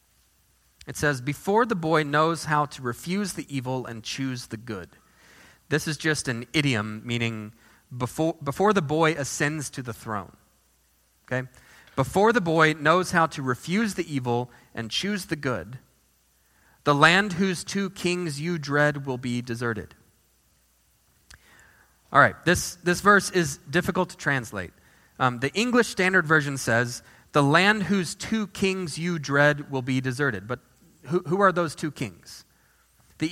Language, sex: English, male